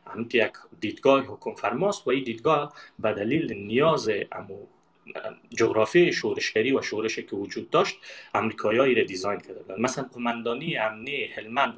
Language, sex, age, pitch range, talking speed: Persian, male, 30-49, 115-175 Hz, 130 wpm